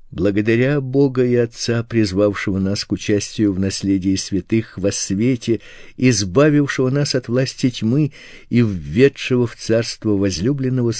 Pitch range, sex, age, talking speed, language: 105-130 Hz, male, 50-69, 125 wpm, Russian